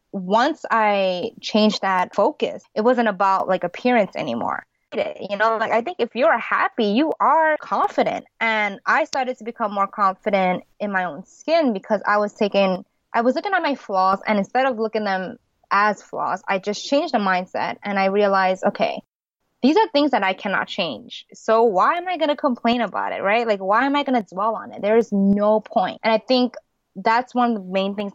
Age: 20-39